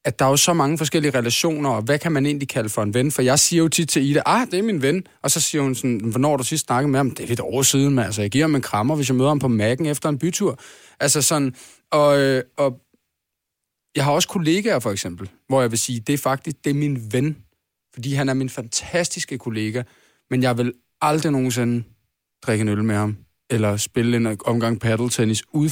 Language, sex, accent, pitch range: Danish, male, native, 120-150 Hz